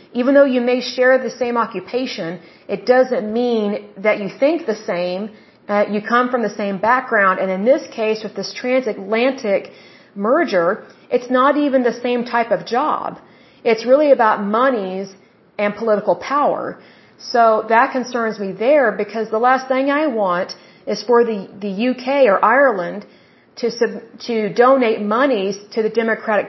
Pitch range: 205-250 Hz